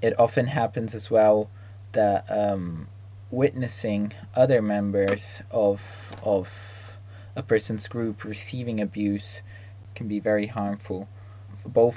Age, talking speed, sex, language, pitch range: 20-39, 110 wpm, male, Italian, 100-110 Hz